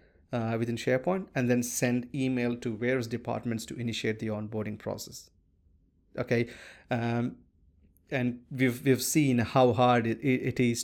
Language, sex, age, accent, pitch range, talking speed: English, male, 30-49, Indian, 115-130 Hz, 140 wpm